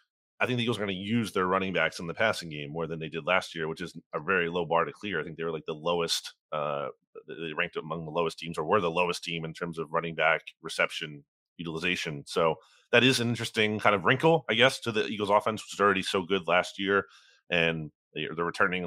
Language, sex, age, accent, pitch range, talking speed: English, male, 30-49, American, 85-100 Hz, 250 wpm